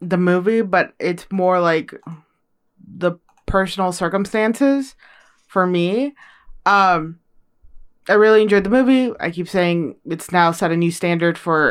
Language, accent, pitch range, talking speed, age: English, American, 170-225 Hz, 140 wpm, 20-39